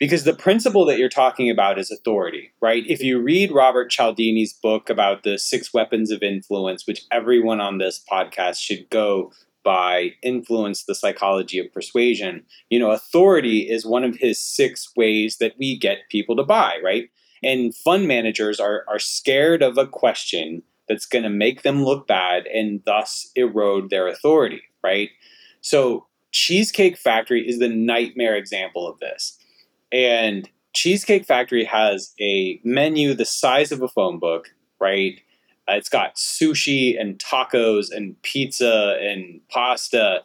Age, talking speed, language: 30-49, 155 wpm, English